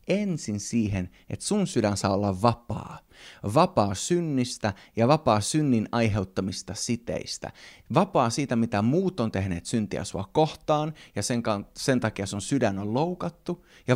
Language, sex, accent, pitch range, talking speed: Finnish, male, native, 100-130 Hz, 140 wpm